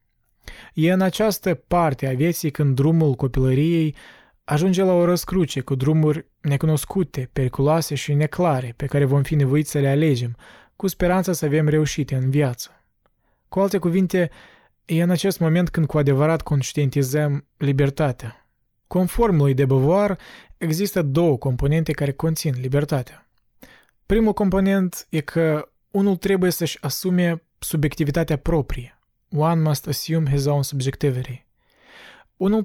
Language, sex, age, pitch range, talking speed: Romanian, male, 20-39, 140-175 Hz, 130 wpm